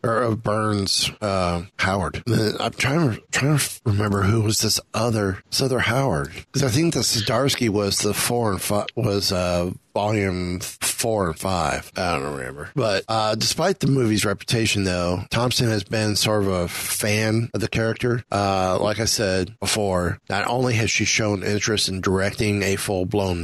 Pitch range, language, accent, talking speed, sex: 95-115 Hz, English, American, 170 wpm, male